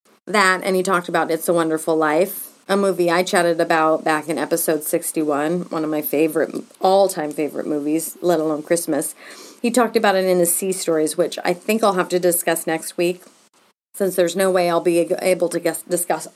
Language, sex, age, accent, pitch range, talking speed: English, female, 30-49, American, 160-205 Hz, 200 wpm